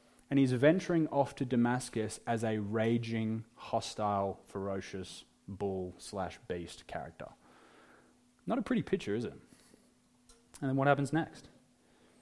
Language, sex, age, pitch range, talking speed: English, male, 20-39, 110-150 Hz, 120 wpm